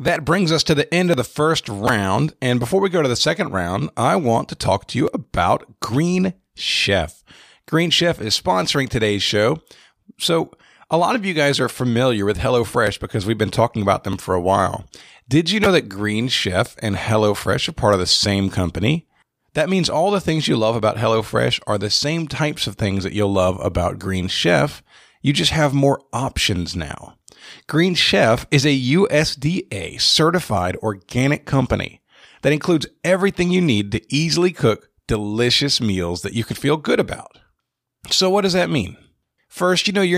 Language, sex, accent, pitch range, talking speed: English, male, American, 105-160 Hz, 185 wpm